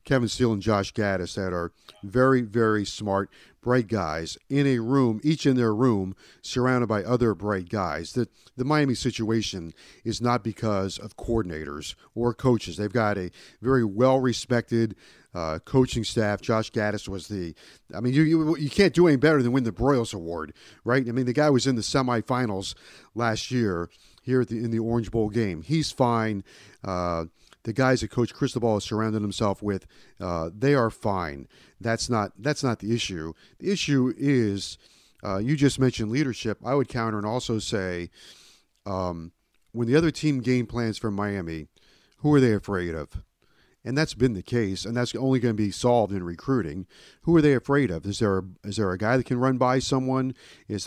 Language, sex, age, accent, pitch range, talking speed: English, male, 40-59, American, 95-125 Hz, 185 wpm